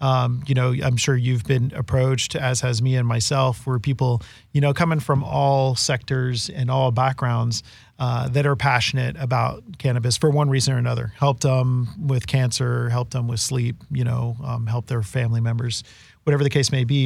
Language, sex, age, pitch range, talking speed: English, male, 40-59, 120-140 Hz, 195 wpm